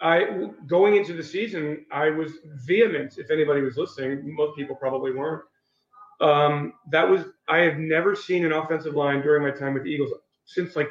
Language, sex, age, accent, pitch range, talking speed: English, male, 40-59, American, 140-170 Hz, 185 wpm